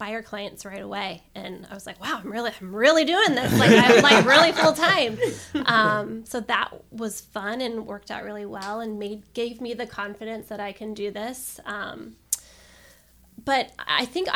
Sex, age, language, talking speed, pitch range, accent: female, 20-39, English, 190 wpm, 190-220 Hz, American